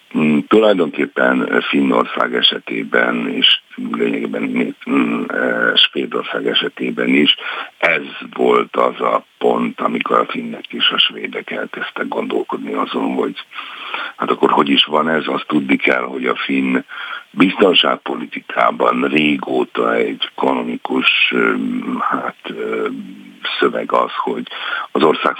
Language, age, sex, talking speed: Hungarian, 60-79, male, 105 wpm